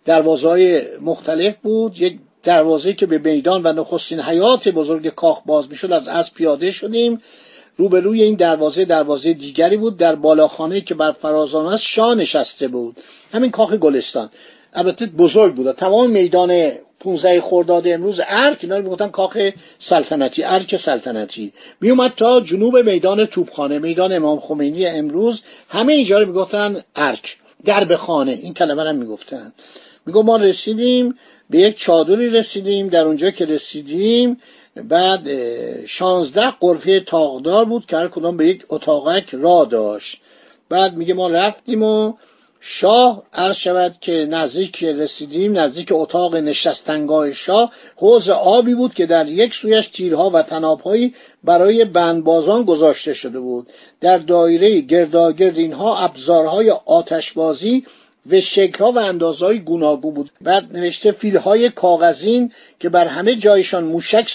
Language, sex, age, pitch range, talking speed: Persian, male, 50-69, 160-215 Hz, 140 wpm